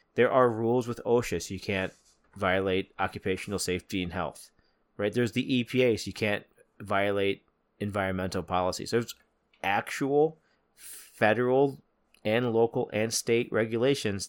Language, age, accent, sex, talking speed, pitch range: English, 30-49, American, male, 135 wpm, 100-125 Hz